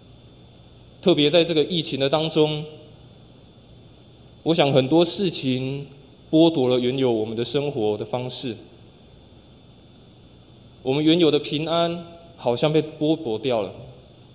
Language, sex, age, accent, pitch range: Chinese, male, 20-39, native, 120-160 Hz